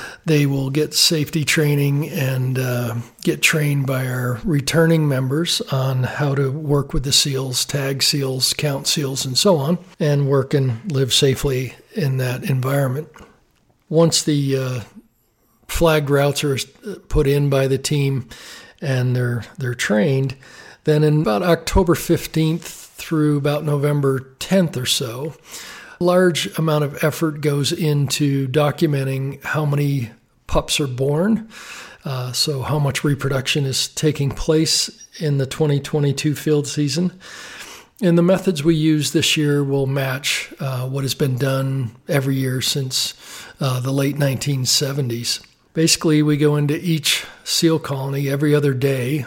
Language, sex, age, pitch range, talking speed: English, male, 50-69, 135-155 Hz, 145 wpm